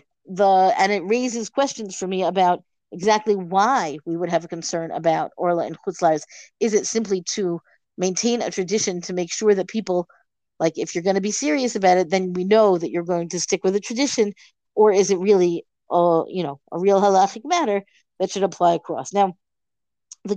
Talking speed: 195 wpm